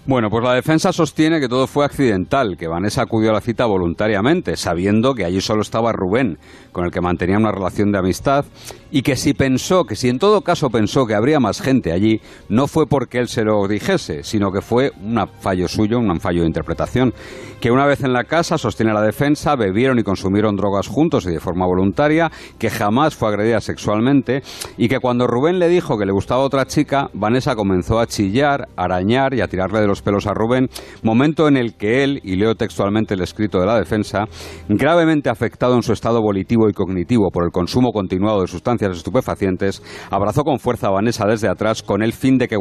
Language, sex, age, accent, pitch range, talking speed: Spanish, male, 50-69, Spanish, 95-125 Hz, 210 wpm